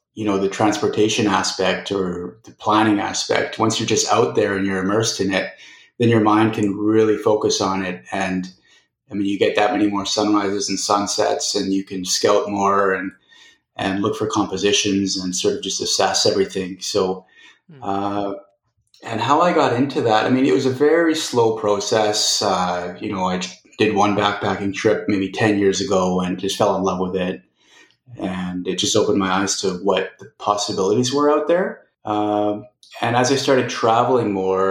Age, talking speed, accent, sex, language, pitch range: 30-49, 190 wpm, American, male, English, 100-120 Hz